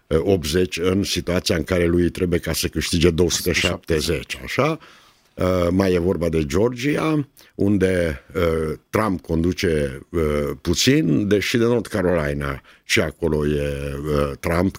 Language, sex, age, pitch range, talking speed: Romanian, male, 60-79, 80-95 Hz, 120 wpm